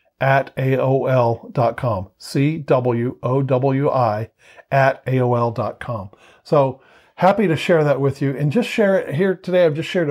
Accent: American